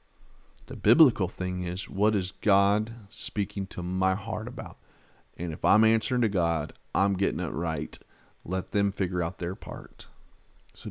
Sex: male